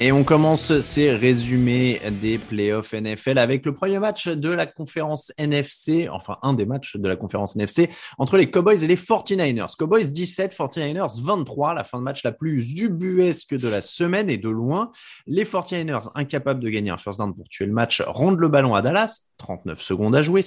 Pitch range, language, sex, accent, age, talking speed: 115-175 Hz, French, male, French, 20-39, 200 wpm